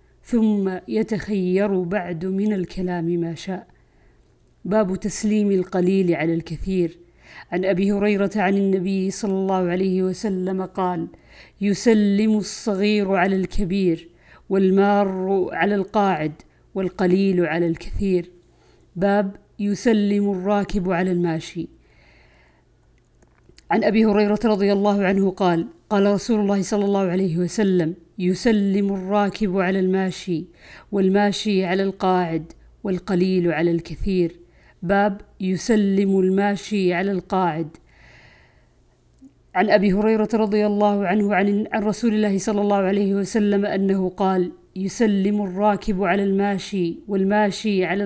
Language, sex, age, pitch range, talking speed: Arabic, female, 50-69, 180-205 Hz, 110 wpm